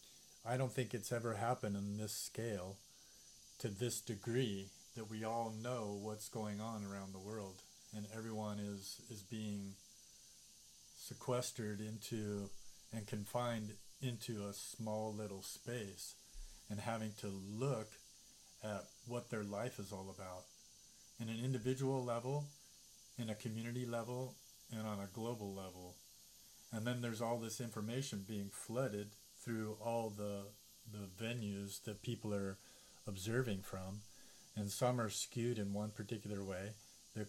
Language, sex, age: English, male, 40-59